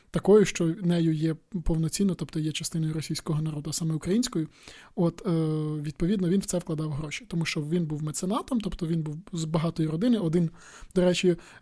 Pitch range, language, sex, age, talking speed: 160-185 Hz, Ukrainian, male, 20-39, 175 wpm